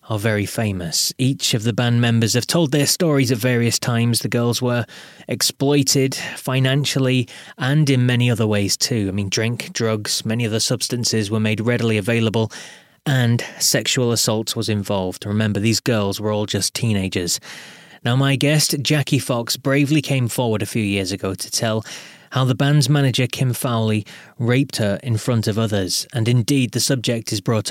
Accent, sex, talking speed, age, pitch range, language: British, male, 175 wpm, 20-39, 110-135 Hz, English